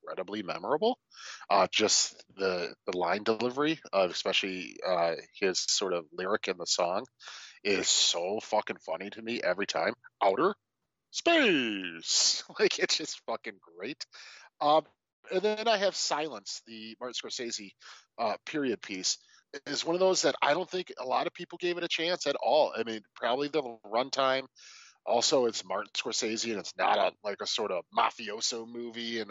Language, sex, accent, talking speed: English, male, American, 170 wpm